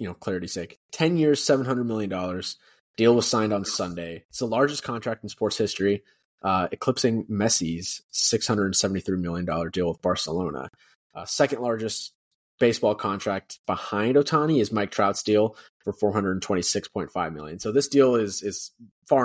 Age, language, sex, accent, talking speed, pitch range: 20-39, English, male, American, 150 wpm, 95-130 Hz